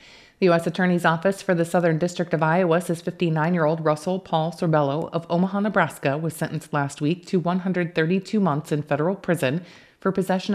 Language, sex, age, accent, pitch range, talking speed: English, female, 30-49, American, 155-180 Hz, 165 wpm